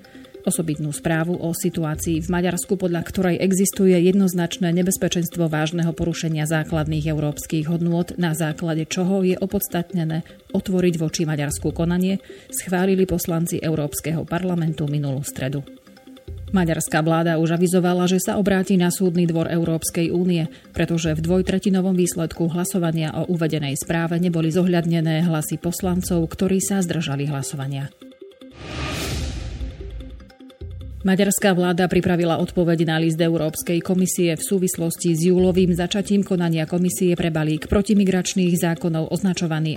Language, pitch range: Slovak, 160-185 Hz